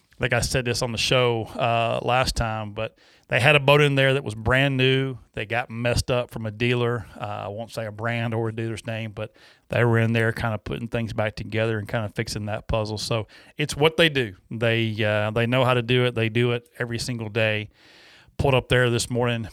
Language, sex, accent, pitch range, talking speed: English, male, American, 110-140 Hz, 245 wpm